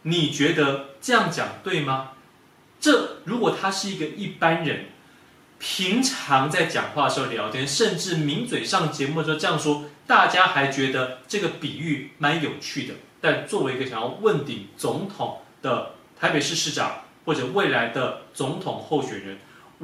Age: 30-49